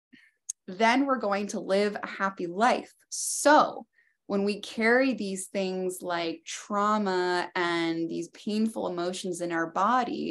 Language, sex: English, female